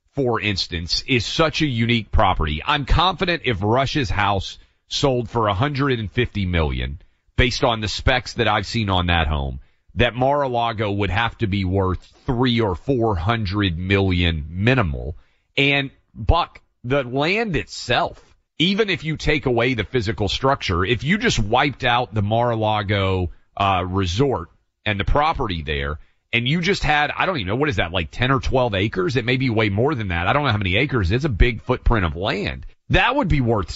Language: English